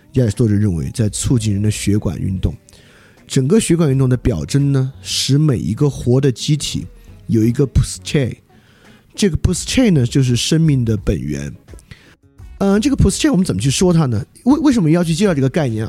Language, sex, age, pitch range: Chinese, male, 20-39, 105-155 Hz